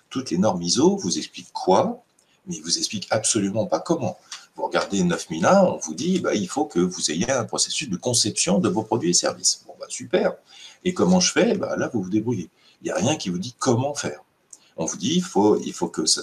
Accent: French